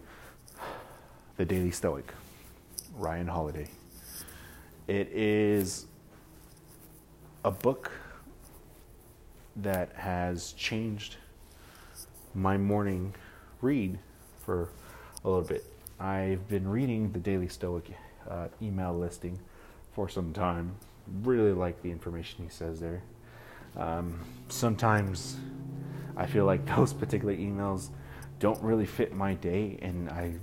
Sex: male